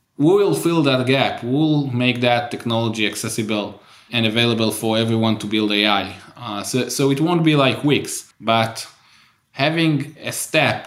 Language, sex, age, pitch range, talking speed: English, male, 20-39, 110-130 Hz, 160 wpm